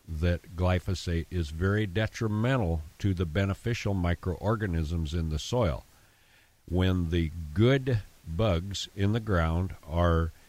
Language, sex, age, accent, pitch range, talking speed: English, male, 50-69, American, 85-100 Hz, 115 wpm